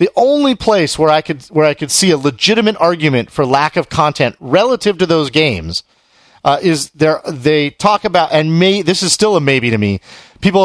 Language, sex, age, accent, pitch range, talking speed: English, male, 40-59, American, 130-180 Hz, 210 wpm